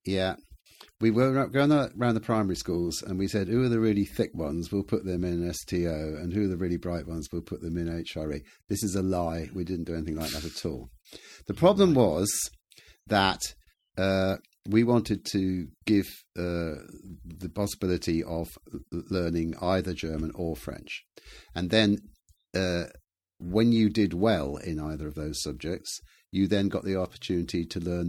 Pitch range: 80-100 Hz